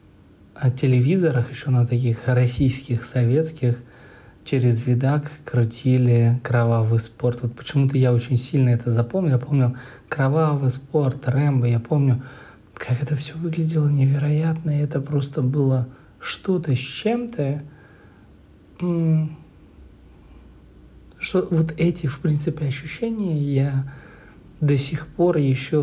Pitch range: 120-150 Hz